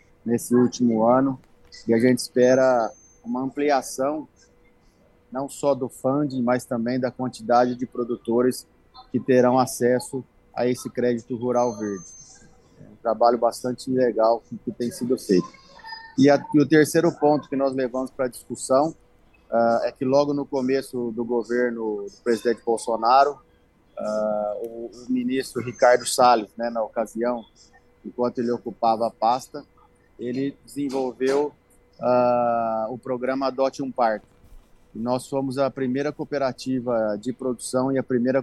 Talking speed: 140 wpm